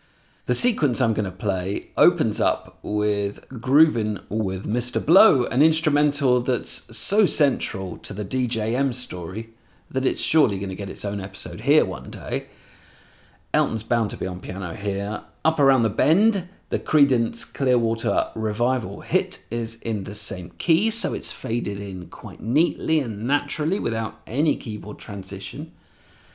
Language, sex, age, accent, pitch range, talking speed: English, male, 40-59, British, 105-145 Hz, 150 wpm